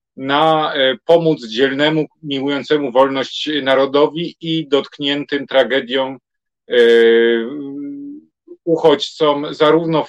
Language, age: Polish, 40-59